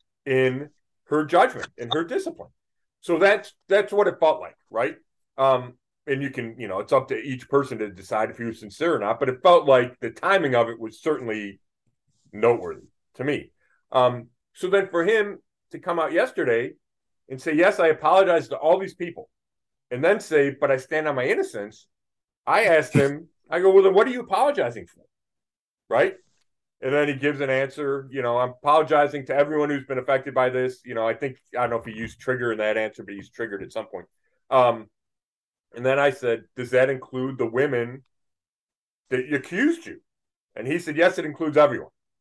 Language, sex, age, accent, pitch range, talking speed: English, male, 40-59, American, 125-185 Hz, 205 wpm